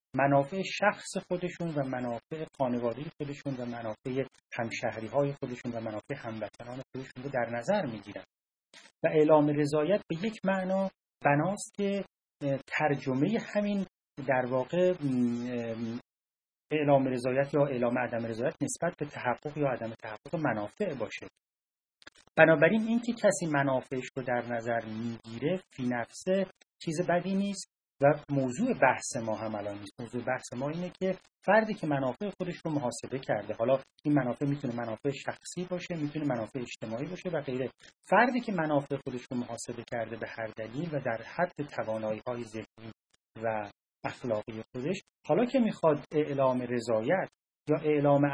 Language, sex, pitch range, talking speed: English, male, 120-170 Hz, 145 wpm